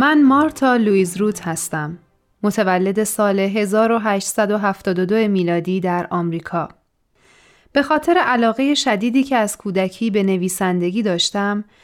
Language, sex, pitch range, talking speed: Persian, female, 190-250 Hz, 105 wpm